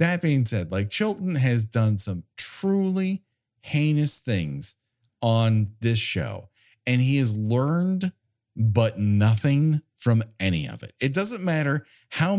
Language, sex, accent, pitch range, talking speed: English, male, American, 105-150 Hz, 135 wpm